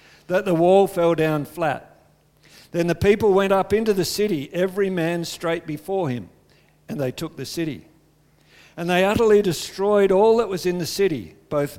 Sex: male